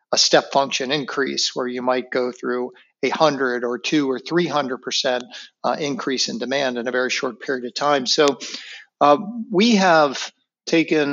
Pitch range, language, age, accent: 130-160 Hz, English, 60-79, American